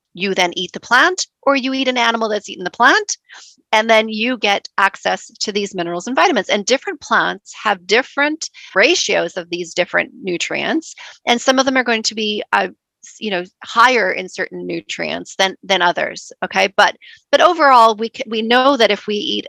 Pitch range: 185-255 Hz